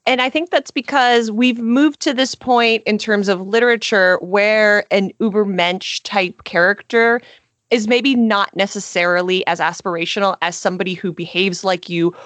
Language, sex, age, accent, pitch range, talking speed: English, female, 30-49, American, 180-240 Hz, 150 wpm